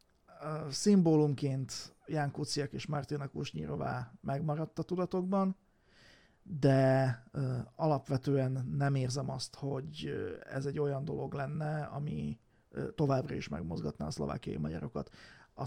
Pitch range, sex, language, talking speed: 130-150 Hz, male, Hungarian, 105 wpm